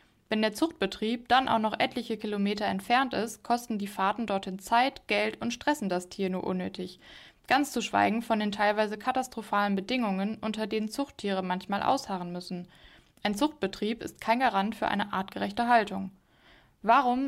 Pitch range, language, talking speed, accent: 200-250 Hz, German, 160 wpm, German